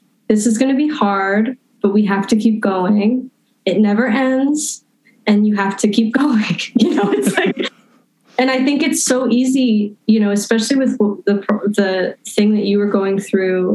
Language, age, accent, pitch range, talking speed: English, 20-39, American, 215-275 Hz, 190 wpm